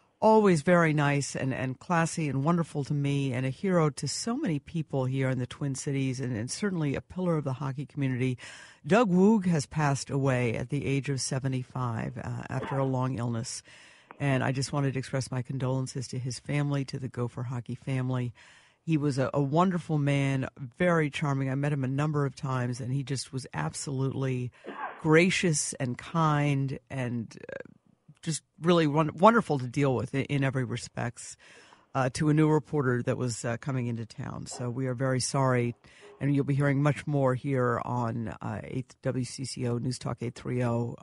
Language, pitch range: English, 130-165 Hz